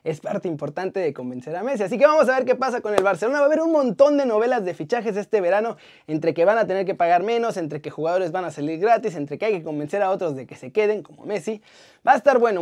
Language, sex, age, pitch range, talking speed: Spanish, male, 20-39, 200-275 Hz, 285 wpm